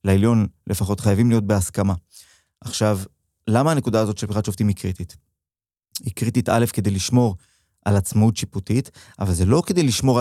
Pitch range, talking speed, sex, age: 100-130 Hz, 160 wpm, male, 30-49